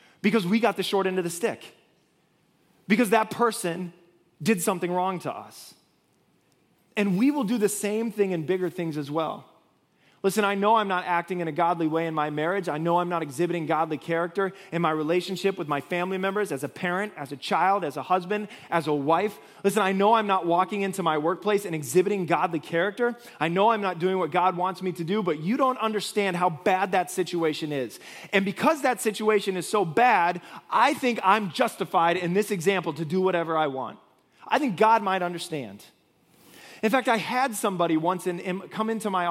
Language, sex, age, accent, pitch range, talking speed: English, male, 20-39, American, 165-205 Hz, 205 wpm